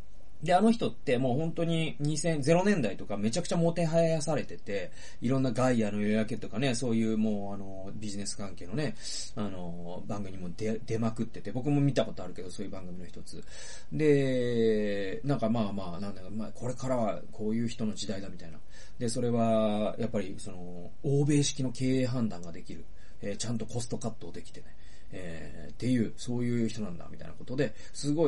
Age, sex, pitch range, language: 30-49, male, 100-135 Hz, Japanese